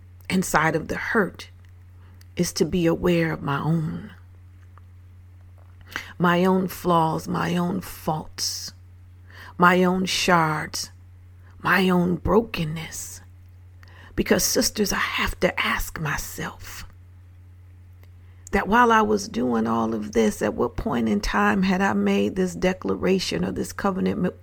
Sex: female